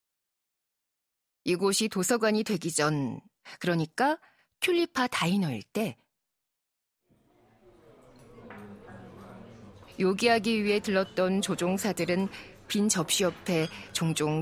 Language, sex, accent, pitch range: Korean, female, native, 170-235 Hz